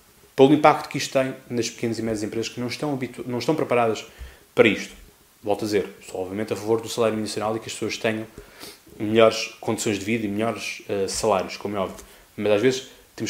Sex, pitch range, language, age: male, 115-190 Hz, Portuguese, 20-39